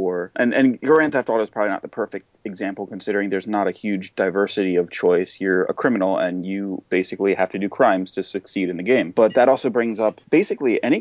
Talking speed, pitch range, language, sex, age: 225 wpm, 95-125 Hz, English, male, 30-49